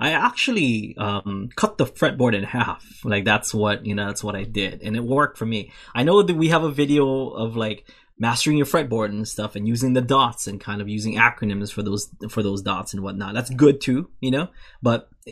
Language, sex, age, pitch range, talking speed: English, male, 20-39, 105-135 Hz, 225 wpm